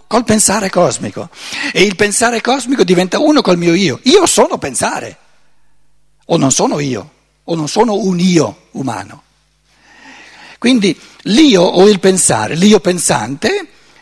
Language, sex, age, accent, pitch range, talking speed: Italian, male, 60-79, native, 170-250 Hz, 135 wpm